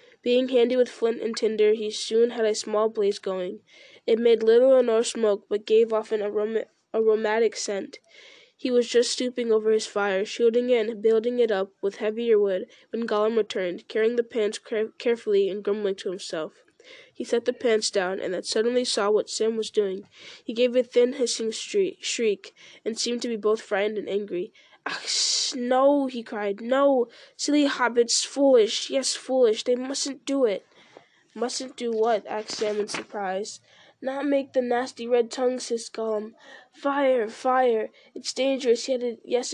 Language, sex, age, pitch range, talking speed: English, female, 10-29, 215-260 Hz, 170 wpm